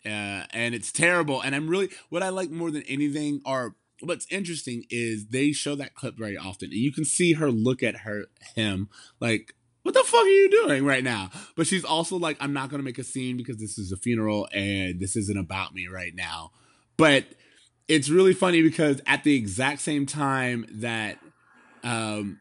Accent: American